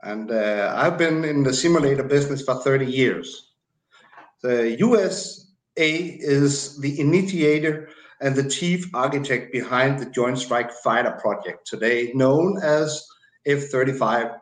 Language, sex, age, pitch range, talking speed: English, male, 60-79, 130-170 Hz, 125 wpm